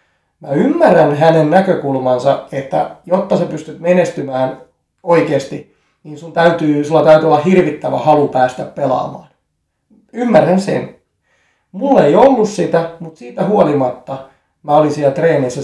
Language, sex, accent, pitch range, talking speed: Finnish, male, native, 130-165 Hz, 125 wpm